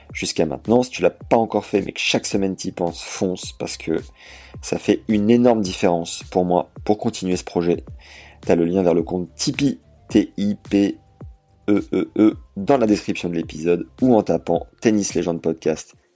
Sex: male